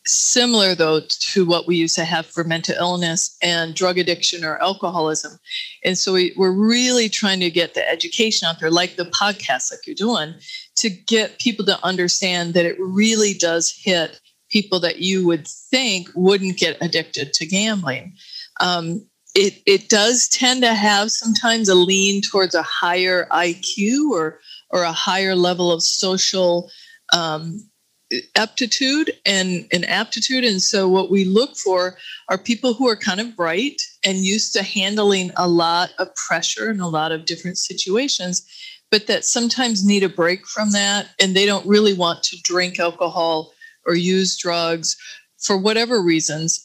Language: English